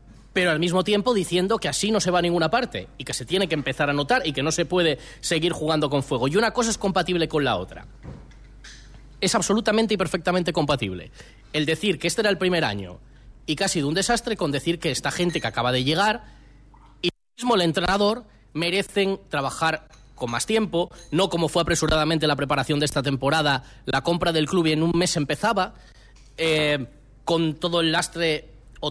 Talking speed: 205 wpm